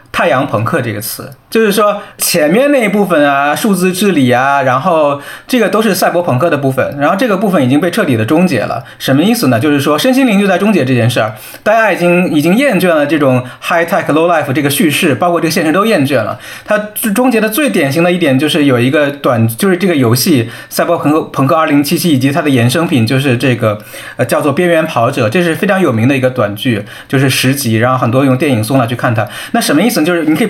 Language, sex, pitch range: Chinese, male, 130-190 Hz